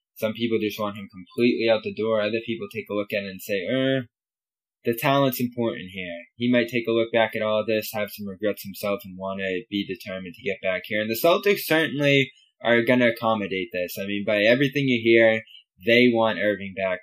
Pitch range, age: 100-125 Hz, 10-29